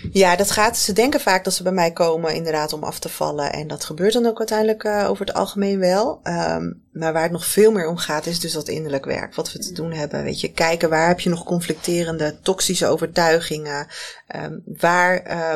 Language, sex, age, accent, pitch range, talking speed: Dutch, female, 20-39, Dutch, 160-195 Hz, 215 wpm